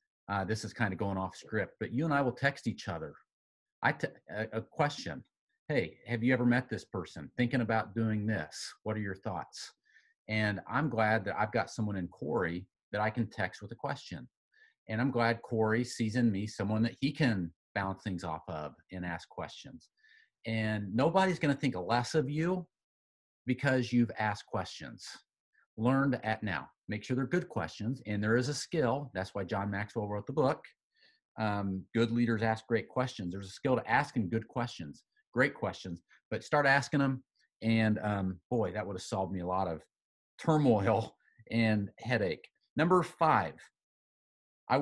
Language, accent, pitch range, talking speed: English, American, 100-125 Hz, 180 wpm